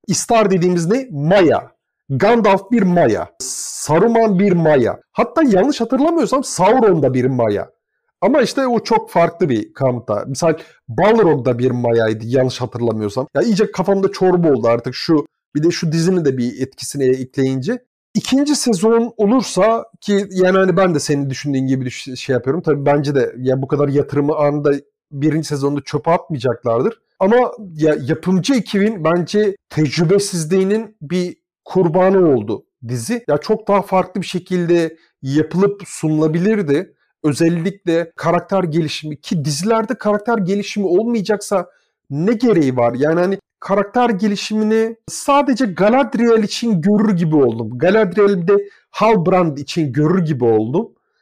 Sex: male